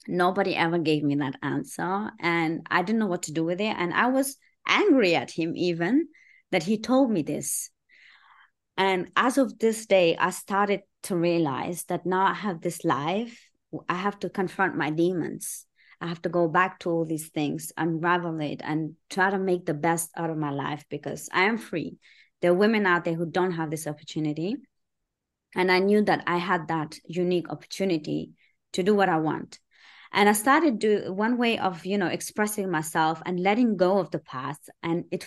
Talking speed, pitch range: 195 wpm, 170-205 Hz